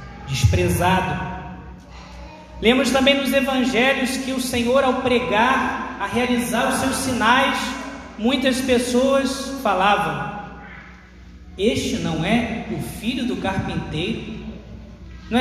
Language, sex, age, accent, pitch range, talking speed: Portuguese, male, 20-39, Brazilian, 155-255 Hz, 100 wpm